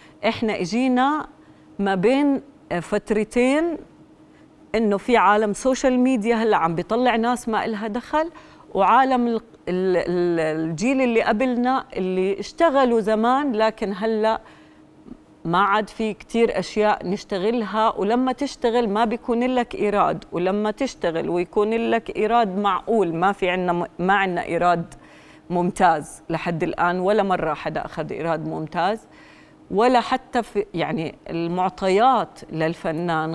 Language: Arabic